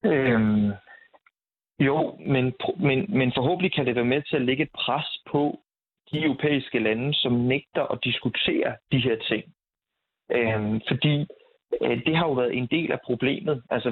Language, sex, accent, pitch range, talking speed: Danish, male, native, 115-140 Hz, 160 wpm